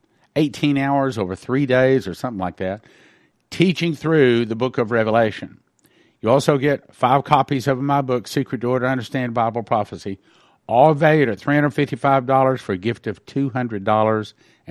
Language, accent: English, American